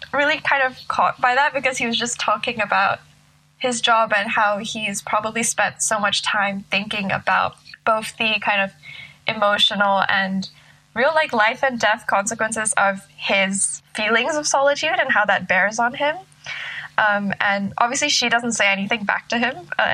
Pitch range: 190-230 Hz